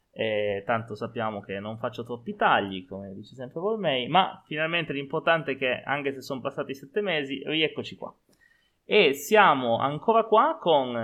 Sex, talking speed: male, 165 wpm